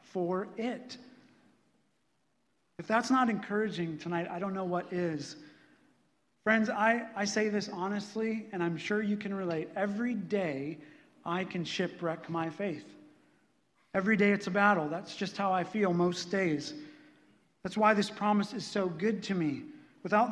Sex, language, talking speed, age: male, English, 155 wpm, 40-59